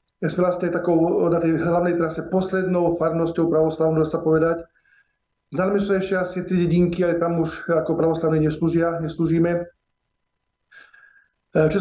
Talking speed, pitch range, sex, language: 130 wpm, 160-180 Hz, male, Slovak